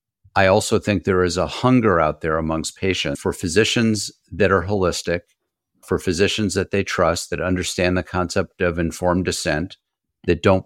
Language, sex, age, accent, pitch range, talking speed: English, male, 50-69, American, 85-105 Hz, 170 wpm